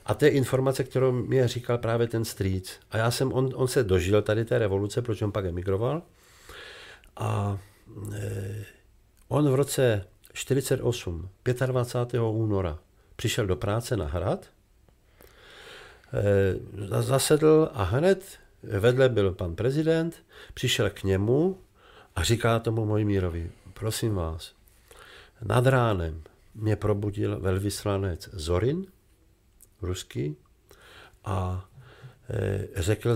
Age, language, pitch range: 50-69, Czech, 95-120 Hz